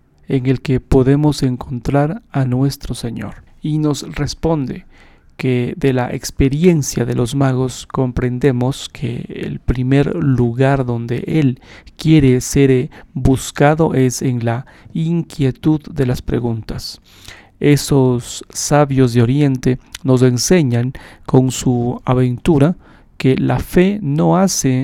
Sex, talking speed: male, 120 wpm